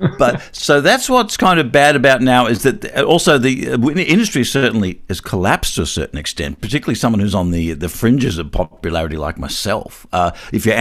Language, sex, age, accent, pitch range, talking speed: English, male, 50-69, Australian, 90-120 Hz, 200 wpm